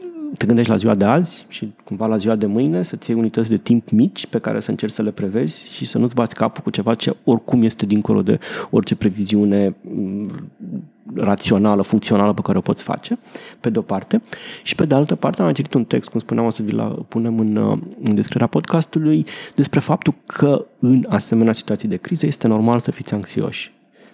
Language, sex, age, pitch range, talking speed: Romanian, male, 30-49, 110-135 Hz, 200 wpm